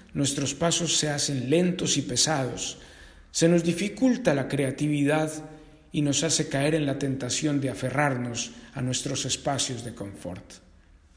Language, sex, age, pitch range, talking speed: Spanish, male, 50-69, 125-175 Hz, 140 wpm